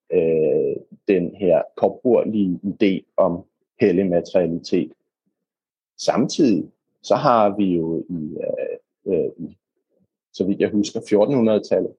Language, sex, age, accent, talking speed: Danish, male, 30-49, native, 90 wpm